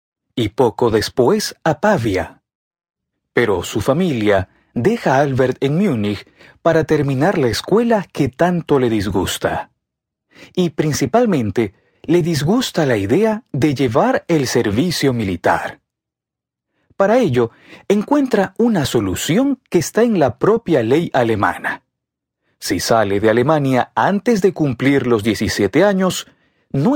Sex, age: male, 40-59